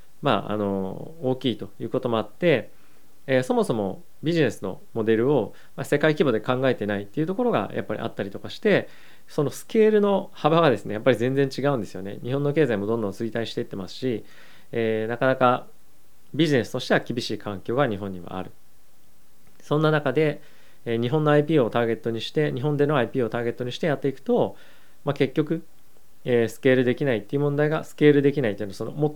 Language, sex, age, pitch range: Japanese, male, 20-39, 110-150 Hz